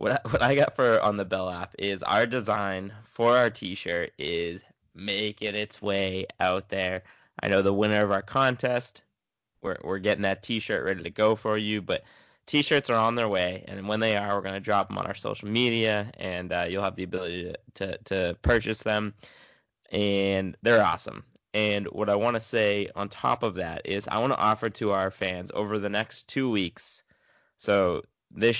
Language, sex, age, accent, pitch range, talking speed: English, male, 20-39, American, 100-115 Hz, 200 wpm